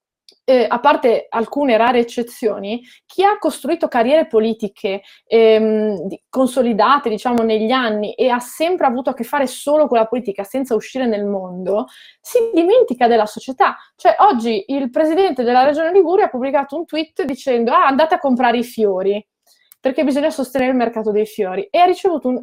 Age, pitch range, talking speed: 20-39, 220-280 Hz, 170 wpm